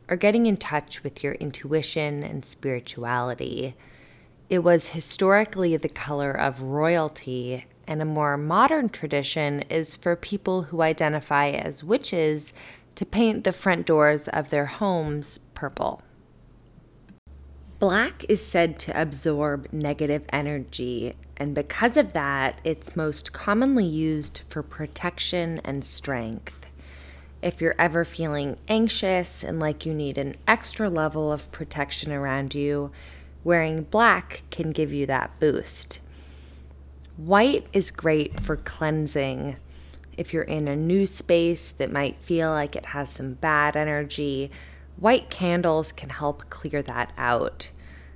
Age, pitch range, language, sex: 20-39, 135-170 Hz, English, female